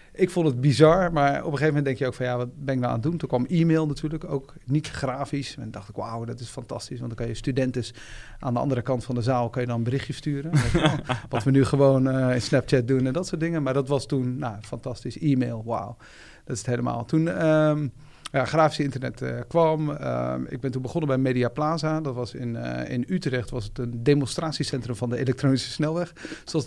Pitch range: 120-145 Hz